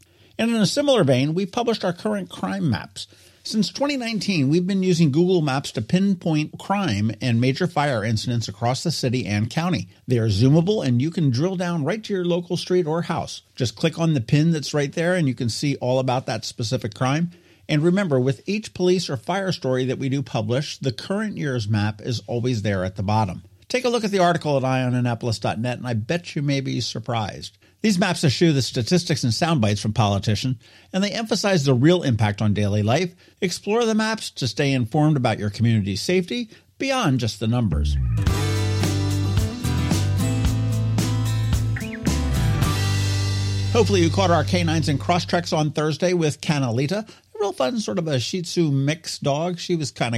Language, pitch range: English, 110-175 Hz